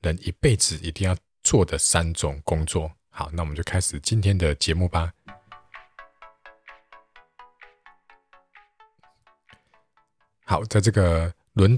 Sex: male